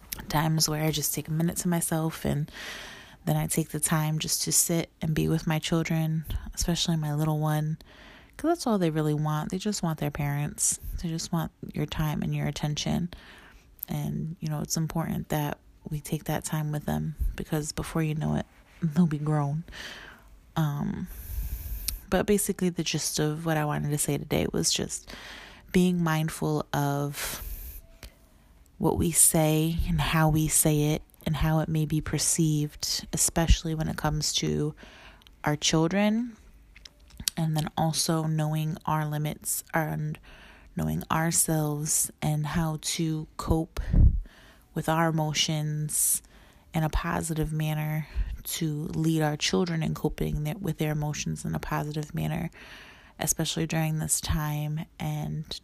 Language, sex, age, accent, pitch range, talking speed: English, female, 30-49, American, 150-165 Hz, 155 wpm